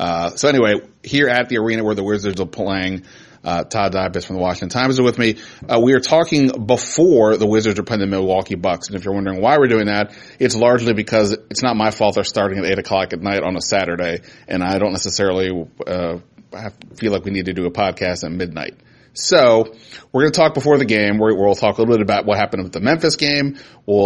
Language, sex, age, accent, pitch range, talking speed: English, male, 30-49, American, 100-120 Hz, 240 wpm